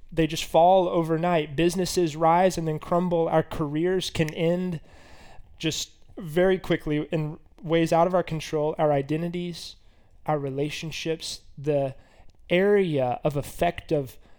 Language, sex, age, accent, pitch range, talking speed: English, male, 20-39, American, 140-170 Hz, 130 wpm